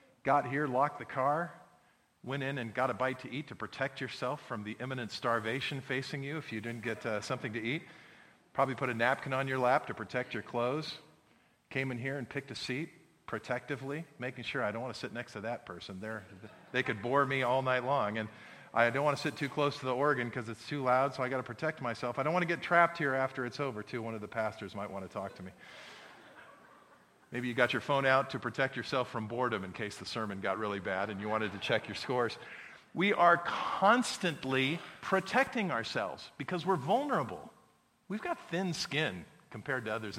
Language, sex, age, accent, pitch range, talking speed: English, male, 40-59, American, 115-150 Hz, 220 wpm